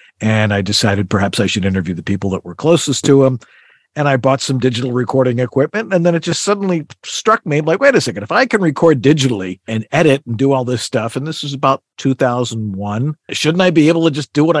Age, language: 50-69, English